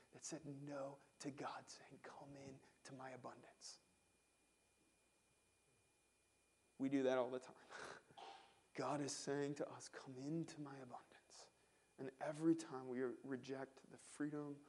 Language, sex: English, male